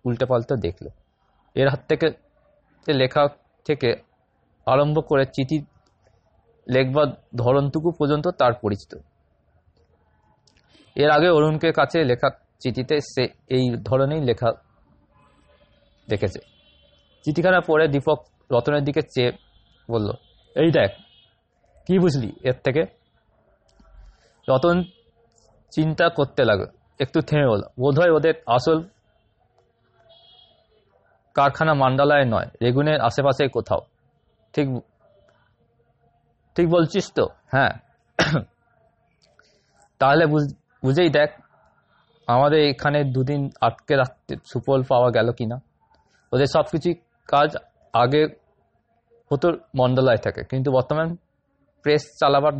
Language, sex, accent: Bengali, male, native